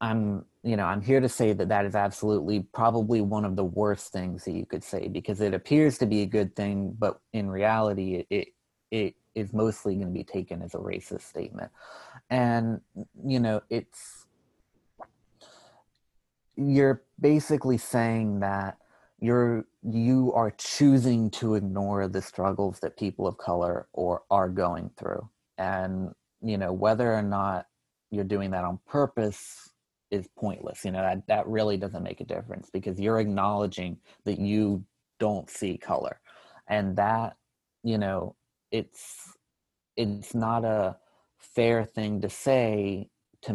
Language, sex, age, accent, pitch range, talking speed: English, male, 30-49, American, 95-115 Hz, 155 wpm